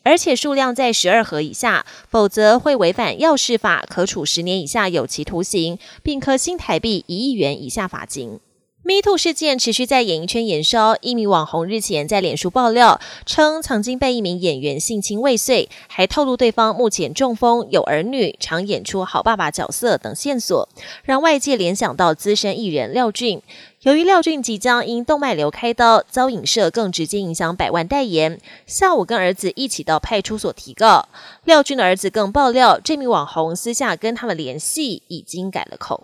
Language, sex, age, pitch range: Chinese, female, 20-39, 185-265 Hz